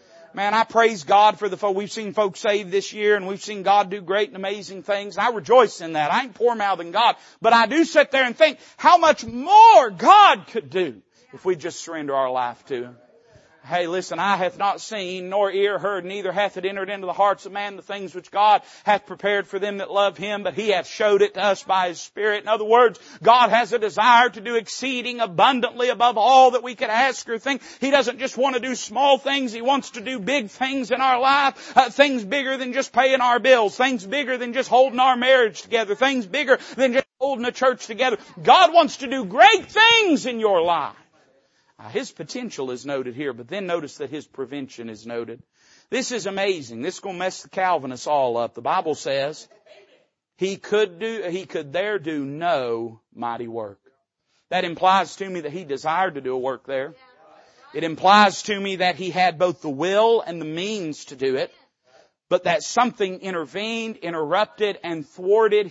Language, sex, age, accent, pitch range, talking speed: English, male, 40-59, American, 180-245 Hz, 215 wpm